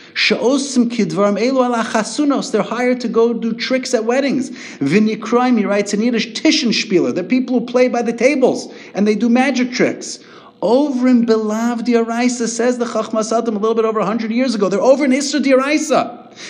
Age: 30-49